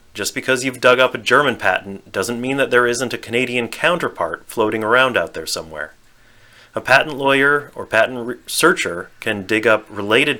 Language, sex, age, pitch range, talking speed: English, male, 30-49, 95-125 Hz, 180 wpm